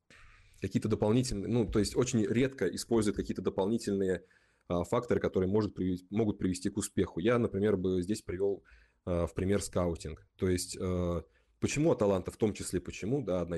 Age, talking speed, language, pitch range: 20-39, 170 wpm, Russian, 90-105 Hz